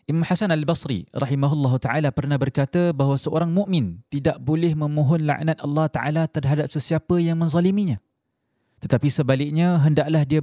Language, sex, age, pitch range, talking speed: Malay, male, 20-39, 135-170 Hz, 140 wpm